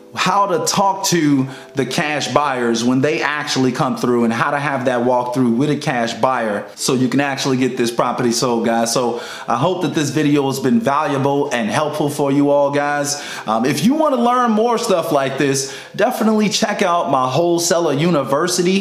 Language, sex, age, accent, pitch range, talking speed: English, male, 30-49, American, 135-180 Hz, 200 wpm